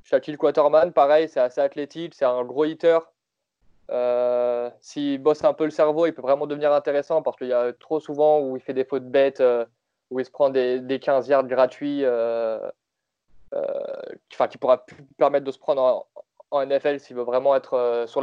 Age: 20-39